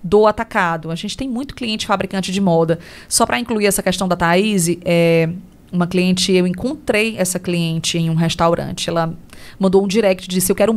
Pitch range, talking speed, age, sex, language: 180-245 Hz, 195 wpm, 20-39, female, Portuguese